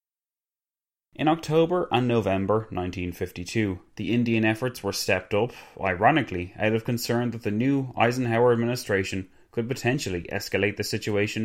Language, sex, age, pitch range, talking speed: English, male, 30-49, 95-125 Hz, 130 wpm